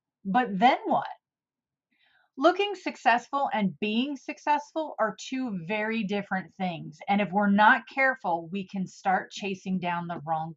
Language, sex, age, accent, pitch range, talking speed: English, female, 30-49, American, 190-255 Hz, 140 wpm